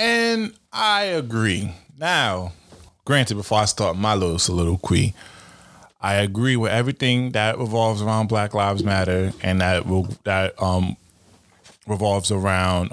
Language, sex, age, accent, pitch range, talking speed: English, male, 20-39, American, 95-135 Hz, 125 wpm